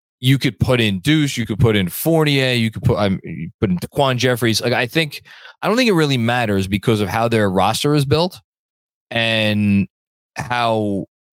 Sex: male